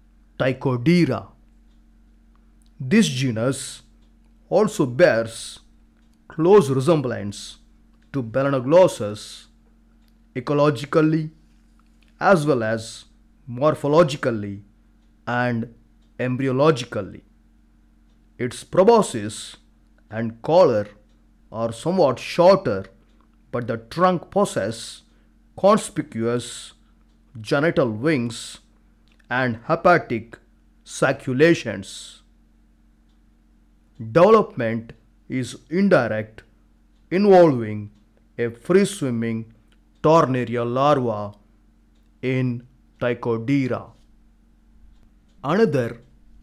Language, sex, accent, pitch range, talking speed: Telugu, male, native, 110-155 Hz, 60 wpm